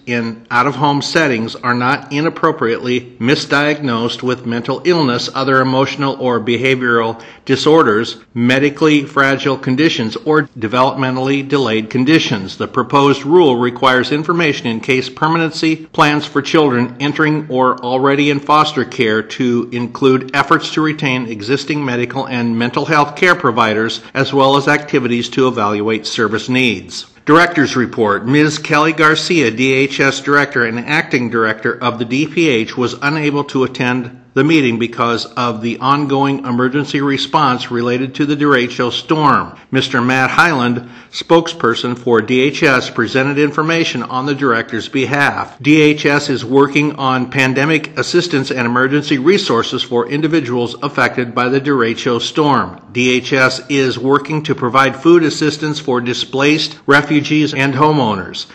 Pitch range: 120-145 Hz